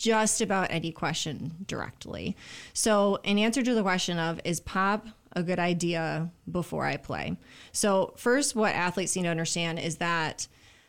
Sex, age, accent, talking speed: female, 20-39, American, 160 wpm